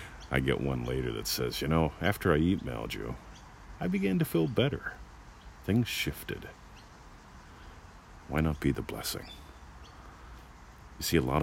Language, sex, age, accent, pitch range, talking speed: English, male, 50-69, American, 65-80 Hz, 145 wpm